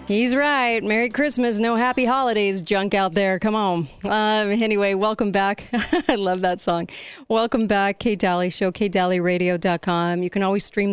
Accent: American